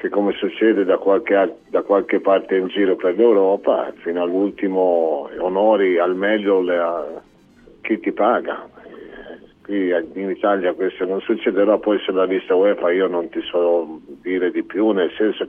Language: Italian